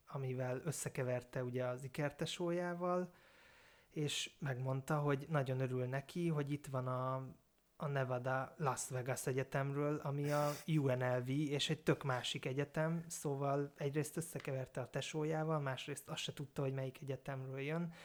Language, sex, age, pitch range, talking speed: Hungarian, male, 20-39, 130-155 Hz, 135 wpm